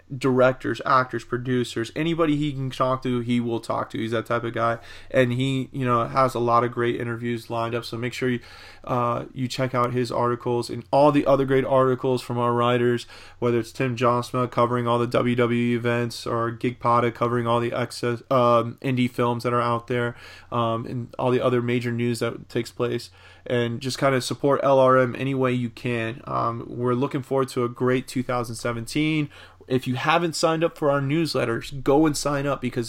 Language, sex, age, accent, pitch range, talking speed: English, male, 20-39, American, 115-130 Hz, 205 wpm